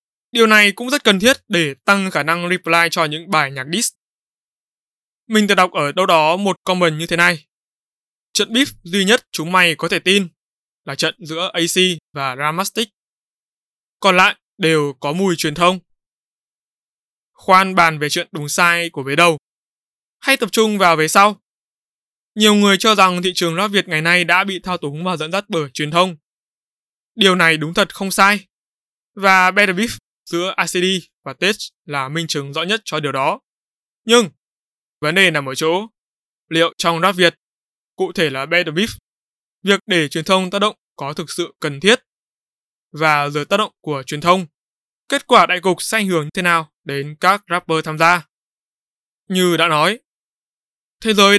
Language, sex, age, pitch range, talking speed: Vietnamese, male, 20-39, 160-200 Hz, 185 wpm